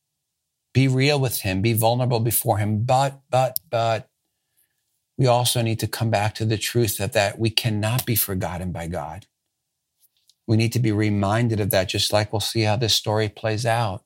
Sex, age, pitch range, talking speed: male, 50-69, 105-125 Hz, 185 wpm